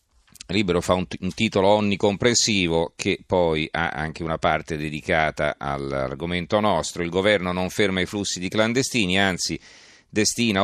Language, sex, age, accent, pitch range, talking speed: Italian, male, 40-59, native, 80-105 Hz, 145 wpm